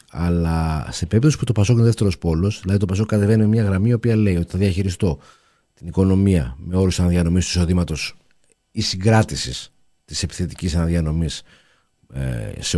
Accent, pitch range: native, 95-130 Hz